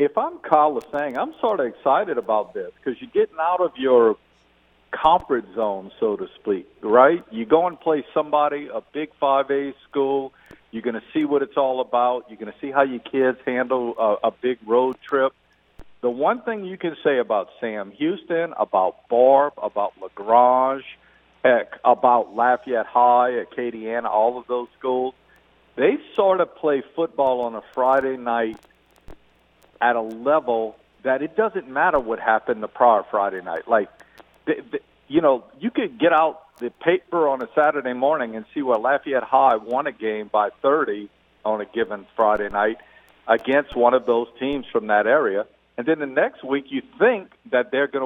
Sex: male